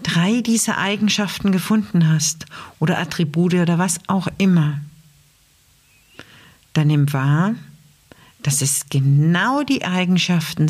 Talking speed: 105 wpm